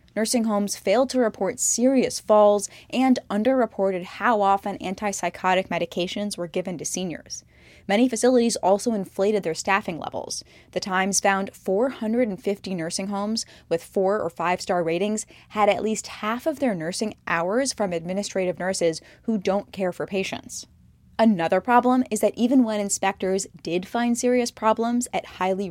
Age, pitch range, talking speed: 10-29, 180-225 Hz, 150 wpm